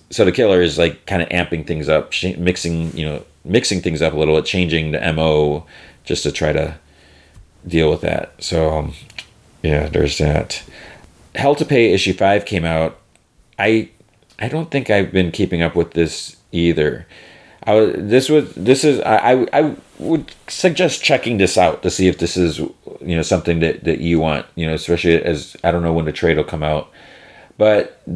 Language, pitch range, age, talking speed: English, 80-95 Hz, 30-49, 195 wpm